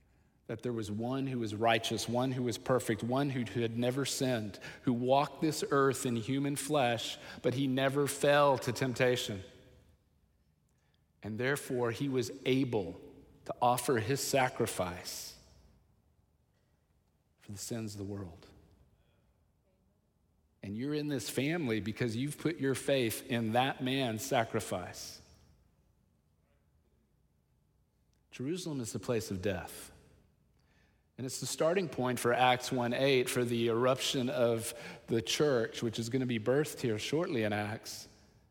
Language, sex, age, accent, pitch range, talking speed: English, male, 40-59, American, 110-140 Hz, 140 wpm